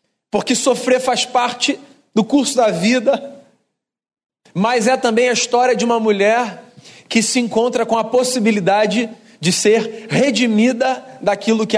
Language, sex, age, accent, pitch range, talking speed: Portuguese, male, 40-59, Brazilian, 205-245 Hz, 140 wpm